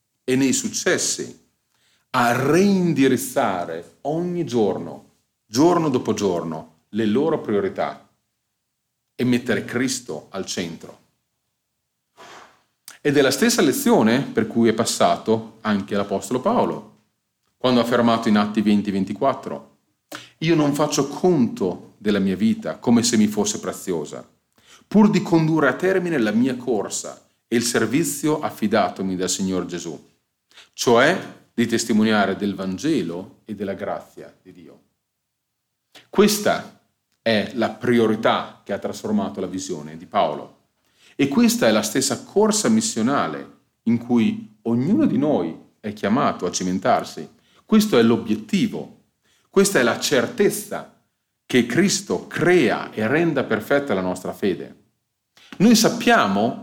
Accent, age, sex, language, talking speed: native, 40-59, male, Italian, 125 wpm